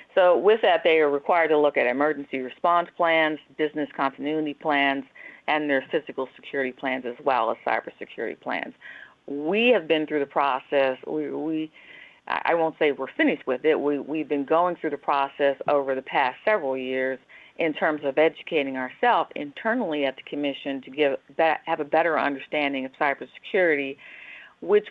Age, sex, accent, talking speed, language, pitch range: 50-69, female, American, 170 wpm, English, 140-165 Hz